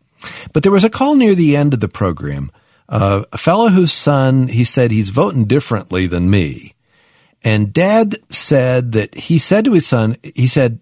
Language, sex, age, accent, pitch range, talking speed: English, male, 50-69, American, 110-155 Hz, 190 wpm